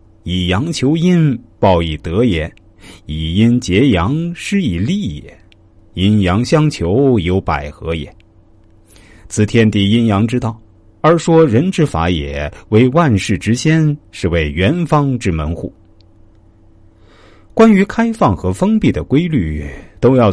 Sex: male